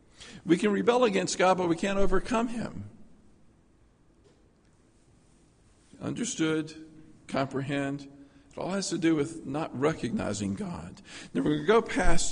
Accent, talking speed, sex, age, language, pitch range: American, 130 wpm, male, 50-69, English, 110-160 Hz